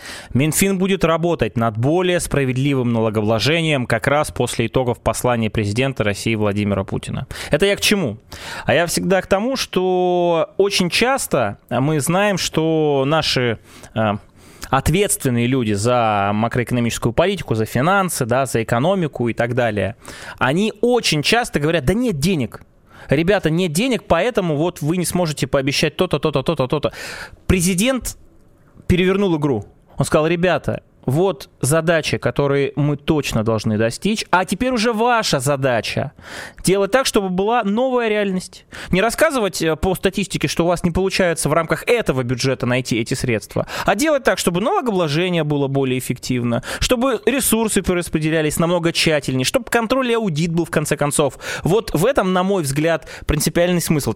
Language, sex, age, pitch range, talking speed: Russian, male, 20-39, 125-185 Hz, 150 wpm